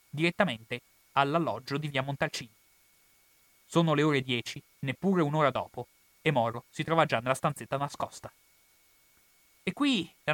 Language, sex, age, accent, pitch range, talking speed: Italian, male, 30-49, native, 135-195 Hz, 135 wpm